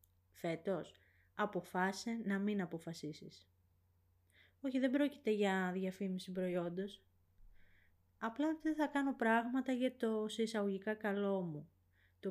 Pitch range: 150-220 Hz